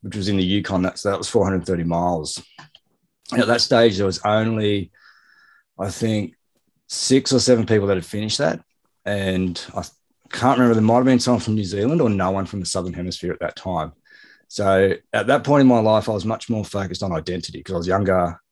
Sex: male